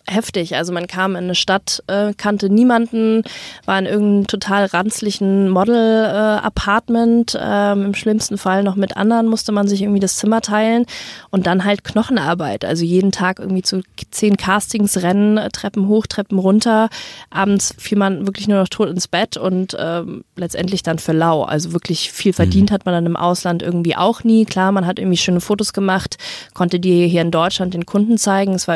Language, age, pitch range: German, 20-39, 175-205 Hz